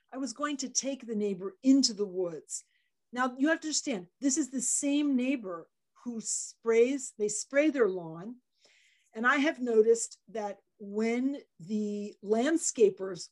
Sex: female